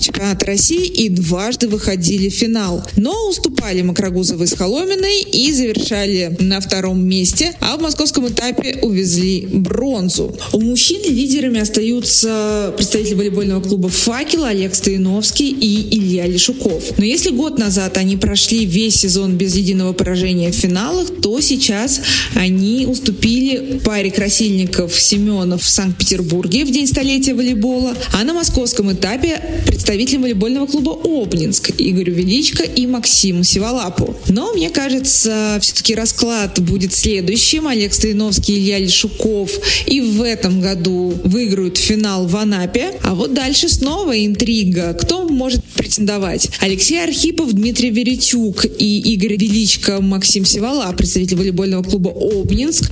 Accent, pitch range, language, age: native, 195-255 Hz, Russian, 20-39